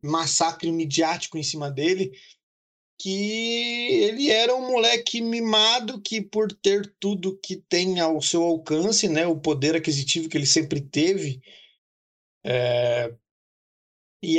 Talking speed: 120 wpm